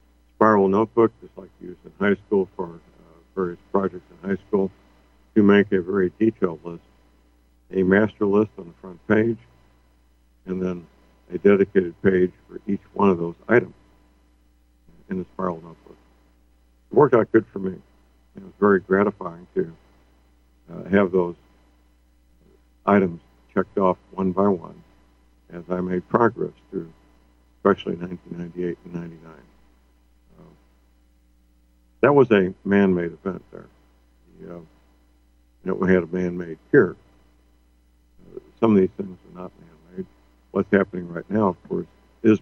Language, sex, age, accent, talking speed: English, male, 60-79, American, 145 wpm